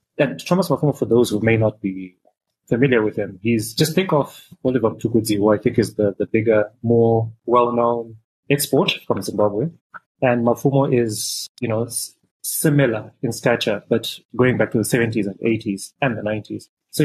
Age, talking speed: 30-49, 175 wpm